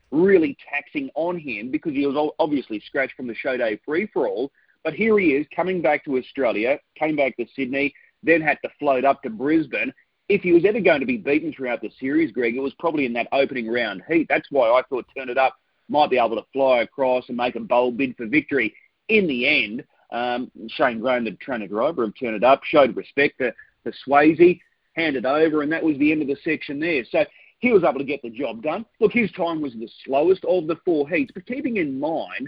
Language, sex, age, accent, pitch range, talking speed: English, male, 30-49, Australian, 135-190 Hz, 230 wpm